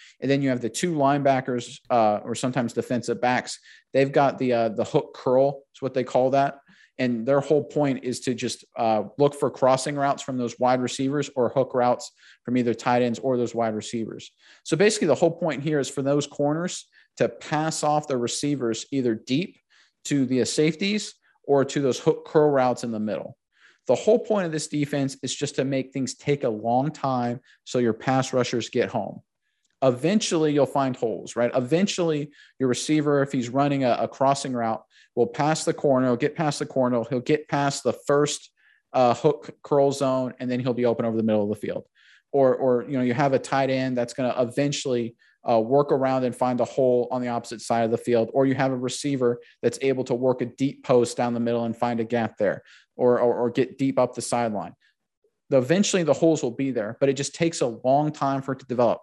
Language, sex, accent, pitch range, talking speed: English, male, American, 120-145 Hz, 220 wpm